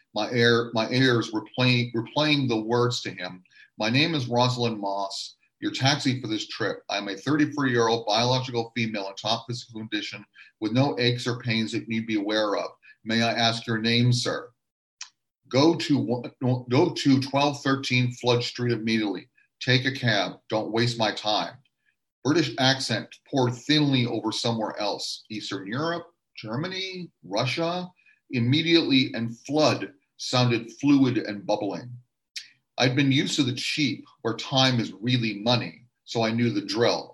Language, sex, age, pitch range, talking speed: English, male, 40-59, 115-130 Hz, 155 wpm